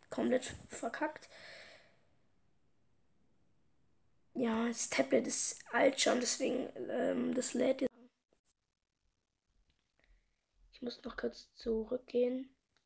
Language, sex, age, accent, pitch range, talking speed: German, female, 20-39, German, 245-300 Hz, 80 wpm